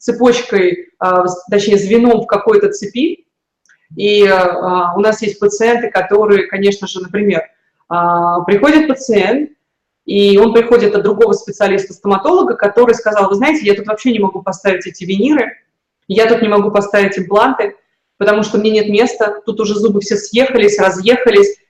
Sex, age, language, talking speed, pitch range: female, 20-39, Russian, 155 wpm, 200-230 Hz